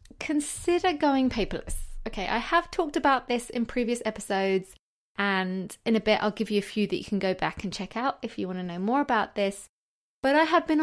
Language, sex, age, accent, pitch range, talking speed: English, female, 20-39, British, 195-250 Hz, 225 wpm